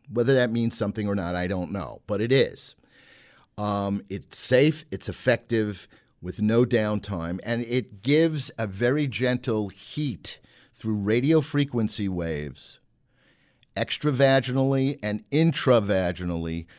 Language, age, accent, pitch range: English, 50-69, American, 95-125 Hz